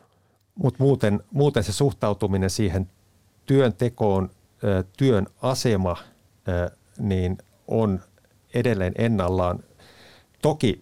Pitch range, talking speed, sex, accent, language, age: 90-110 Hz, 80 wpm, male, native, Finnish, 50-69